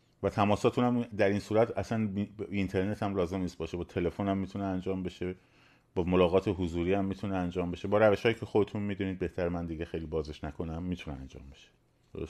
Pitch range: 90-115 Hz